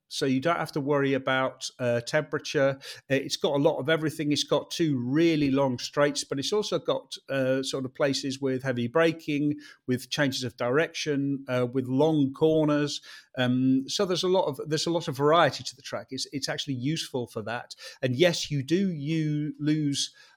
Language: English